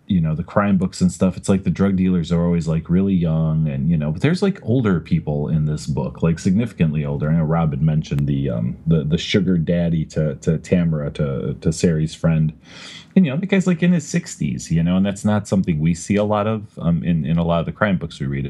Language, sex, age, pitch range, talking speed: English, male, 30-49, 80-95 Hz, 260 wpm